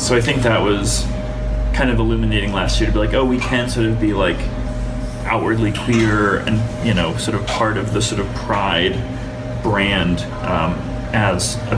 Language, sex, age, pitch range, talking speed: English, male, 30-49, 105-120 Hz, 190 wpm